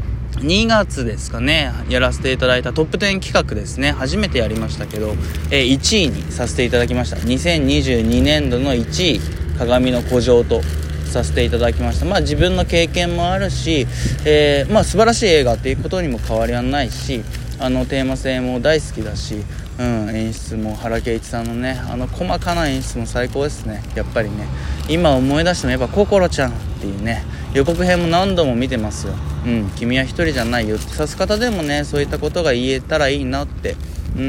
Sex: male